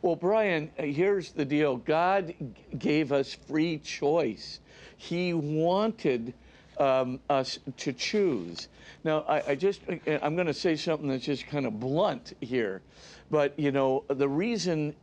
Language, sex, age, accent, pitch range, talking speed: English, male, 50-69, American, 140-170 Hz, 150 wpm